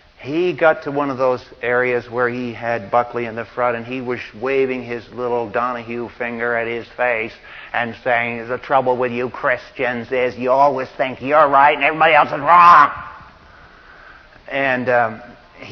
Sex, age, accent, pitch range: male, 50-69, American, 120-145 Hz